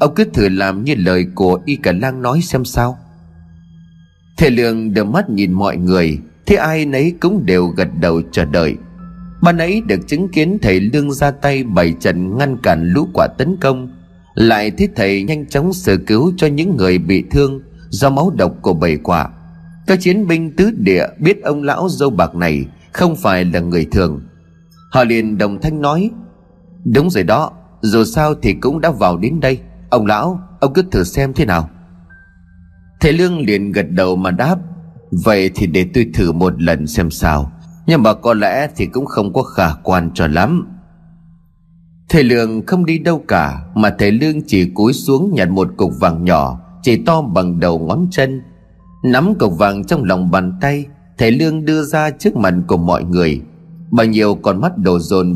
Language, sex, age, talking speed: Vietnamese, male, 30-49, 190 wpm